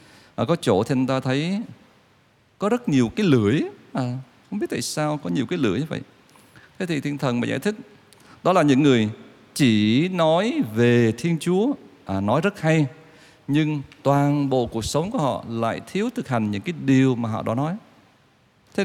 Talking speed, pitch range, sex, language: 195 wpm, 110-155 Hz, male, Vietnamese